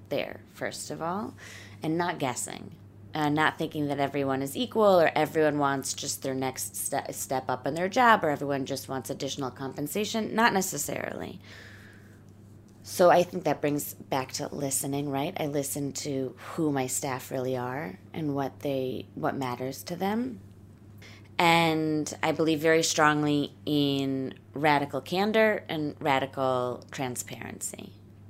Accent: American